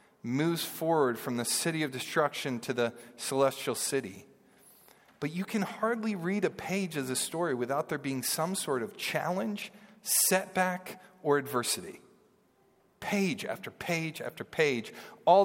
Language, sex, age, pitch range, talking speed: English, male, 40-59, 125-175 Hz, 145 wpm